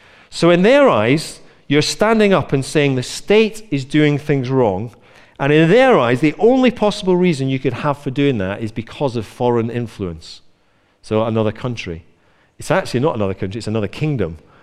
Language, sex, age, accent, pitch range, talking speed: English, male, 40-59, British, 120-175 Hz, 185 wpm